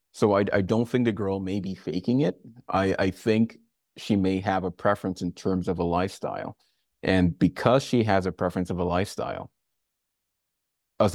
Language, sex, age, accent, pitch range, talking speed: English, male, 30-49, American, 85-100 Hz, 185 wpm